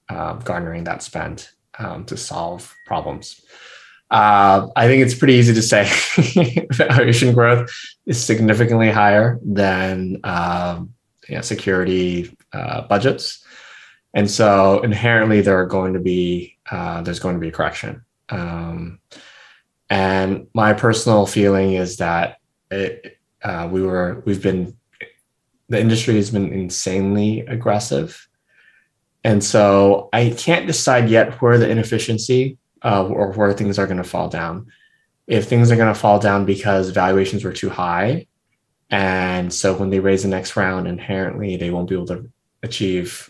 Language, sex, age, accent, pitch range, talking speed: English, male, 20-39, American, 95-115 Hz, 145 wpm